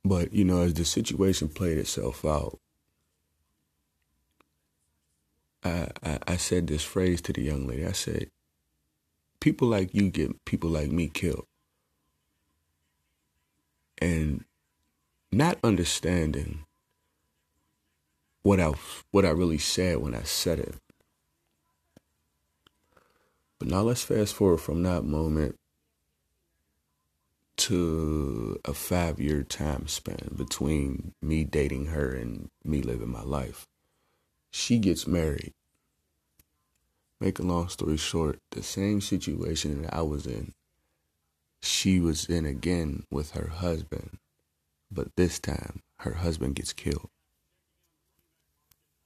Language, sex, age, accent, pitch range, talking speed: English, male, 40-59, American, 75-90 Hz, 115 wpm